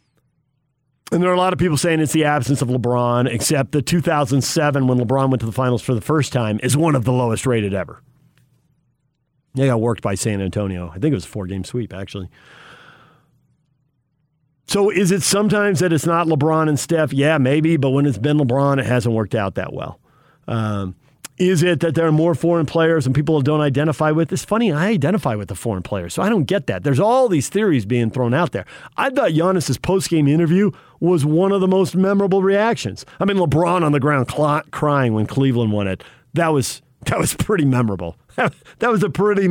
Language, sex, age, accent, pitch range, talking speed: English, male, 40-59, American, 125-170 Hz, 210 wpm